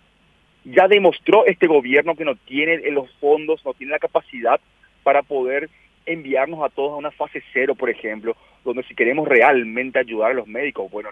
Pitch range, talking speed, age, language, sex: 135-215 Hz, 185 wpm, 40-59, Spanish, male